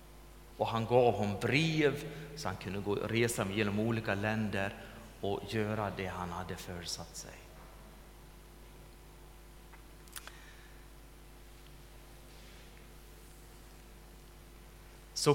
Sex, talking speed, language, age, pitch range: male, 80 wpm, Swedish, 30-49, 100-130 Hz